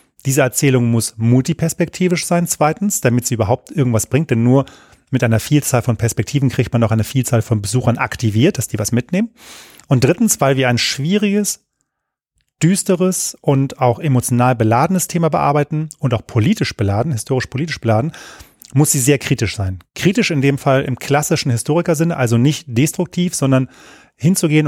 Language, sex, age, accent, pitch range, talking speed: German, male, 30-49, German, 120-150 Hz, 165 wpm